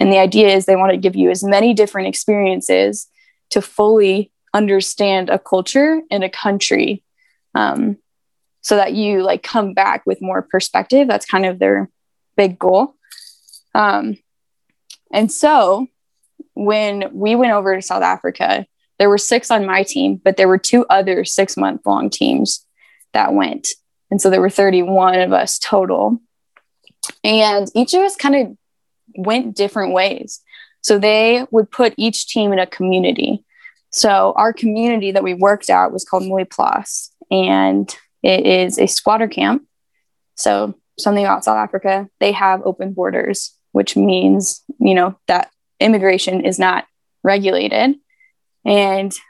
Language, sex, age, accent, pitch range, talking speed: English, female, 10-29, American, 190-235 Hz, 155 wpm